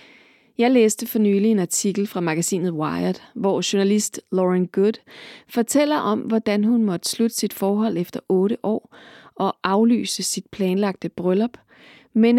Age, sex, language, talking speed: 30-49, female, Danish, 145 wpm